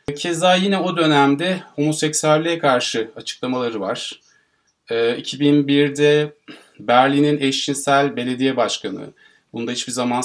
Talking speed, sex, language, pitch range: 95 wpm, male, Turkish, 125-160 Hz